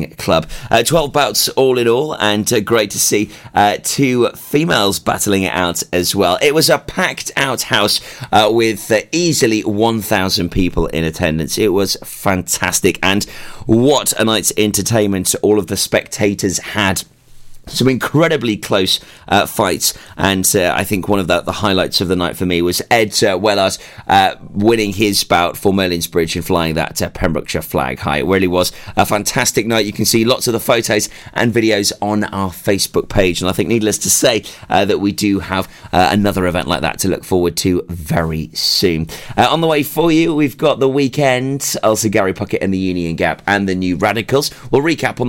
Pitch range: 95-125 Hz